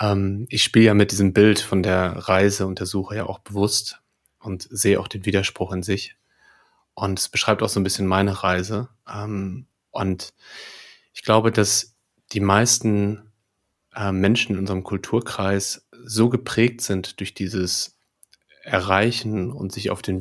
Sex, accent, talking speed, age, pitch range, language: male, German, 150 wpm, 30-49, 95-110 Hz, German